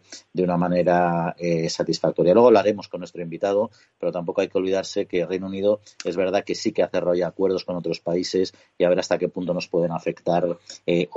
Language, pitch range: Spanish, 85-110 Hz